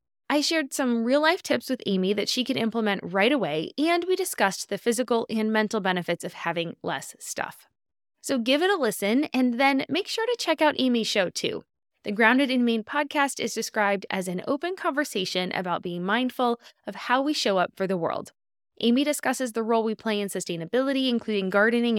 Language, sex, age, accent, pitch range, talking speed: English, female, 20-39, American, 195-275 Hz, 195 wpm